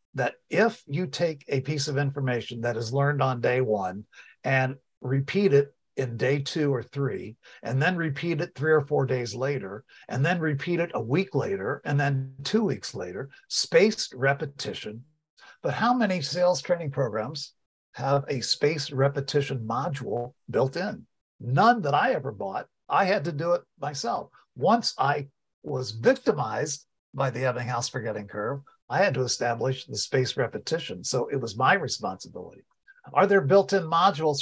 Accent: American